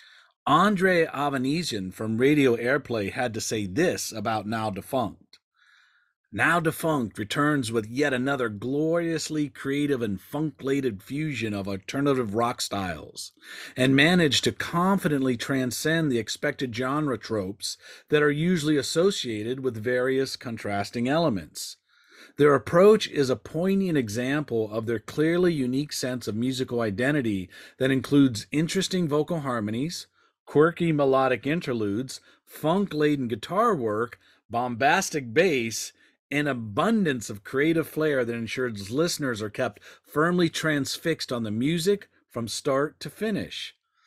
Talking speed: 125 wpm